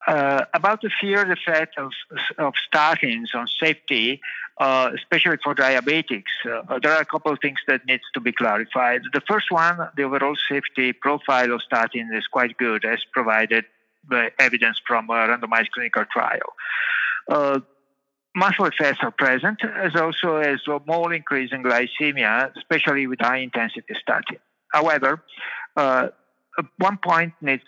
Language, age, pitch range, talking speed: English, 50-69, 125-165 Hz, 155 wpm